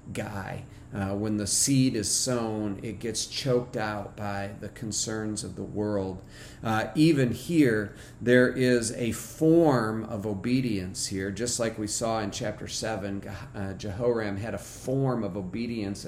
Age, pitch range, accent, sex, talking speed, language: 40-59, 110-135 Hz, American, male, 150 wpm, English